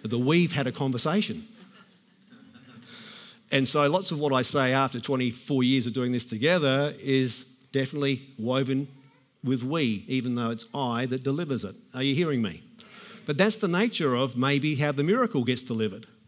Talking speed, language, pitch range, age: 170 wpm, English, 135-195 Hz, 50-69